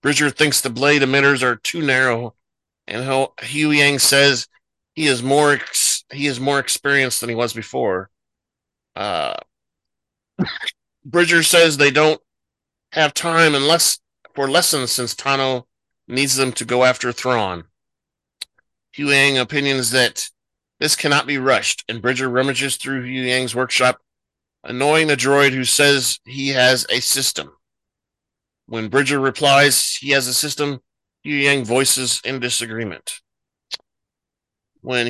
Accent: American